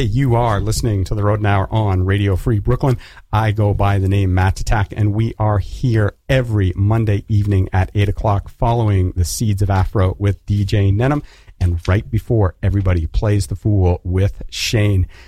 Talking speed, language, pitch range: 175 wpm, English, 95-115 Hz